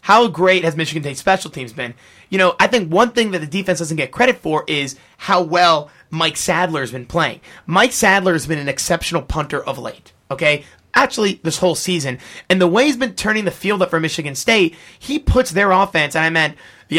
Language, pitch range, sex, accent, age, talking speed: English, 155-190 Hz, male, American, 30-49, 215 wpm